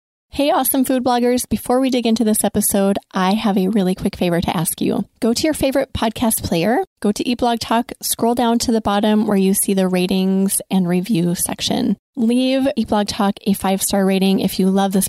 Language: English